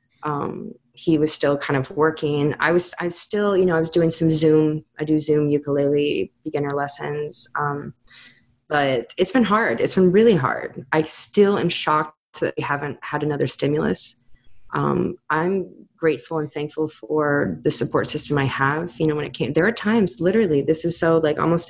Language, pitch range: English, 145-170 Hz